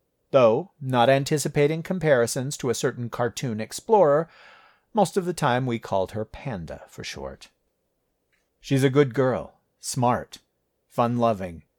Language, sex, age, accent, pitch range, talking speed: English, male, 40-59, American, 95-130 Hz, 125 wpm